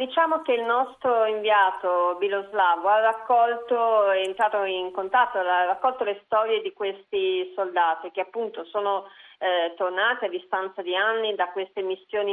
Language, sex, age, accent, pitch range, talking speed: Italian, female, 40-59, native, 175-210 Hz, 150 wpm